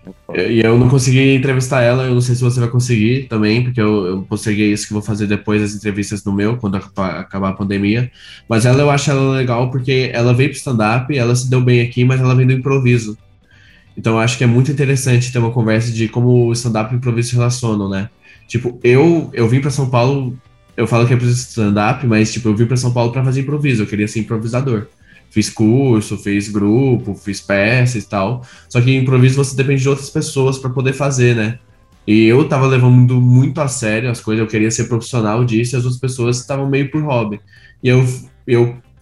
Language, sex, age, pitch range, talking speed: Portuguese, male, 10-29, 110-130 Hz, 225 wpm